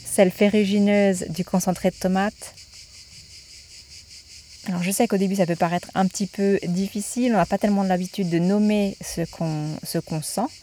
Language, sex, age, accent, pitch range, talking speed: French, female, 30-49, French, 175-205 Hz, 170 wpm